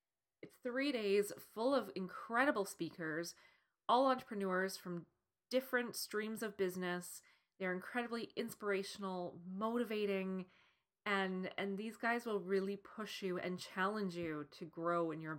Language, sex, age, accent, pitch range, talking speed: English, female, 30-49, American, 170-220 Hz, 130 wpm